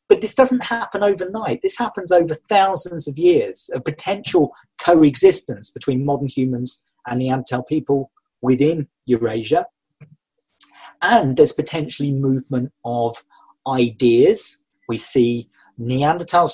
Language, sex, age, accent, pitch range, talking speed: English, male, 40-59, British, 130-190 Hz, 110 wpm